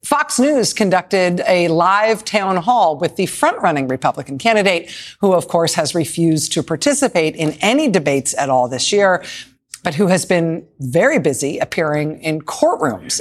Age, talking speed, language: 40-59, 165 wpm, English